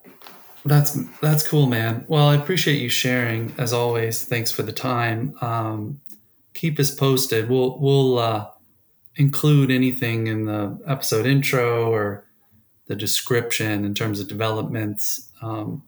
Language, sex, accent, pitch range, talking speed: English, male, American, 105-130 Hz, 135 wpm